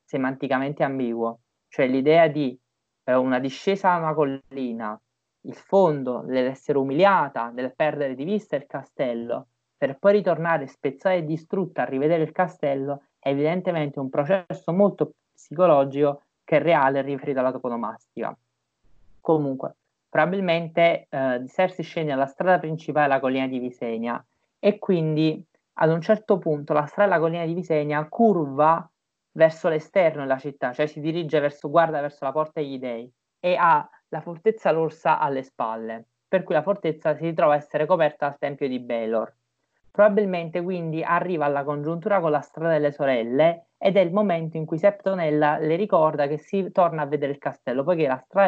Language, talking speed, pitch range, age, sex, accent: Italian, 160 wpm, 135-170 Hz, 30-49, male, native